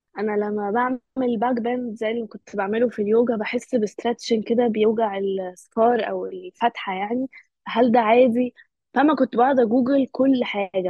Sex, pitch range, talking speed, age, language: female, 210-260 Hz, 150 wpm, 20-39, Arabic